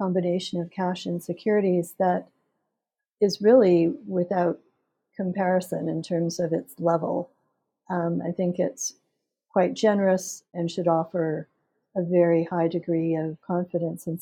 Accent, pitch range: American, 170-190 Hz